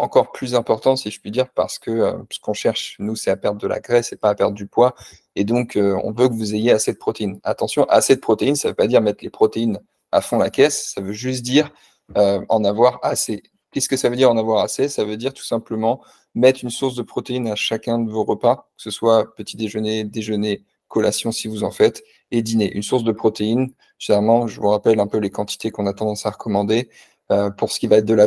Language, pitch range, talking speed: French, 105-120 Hz, 260 wpm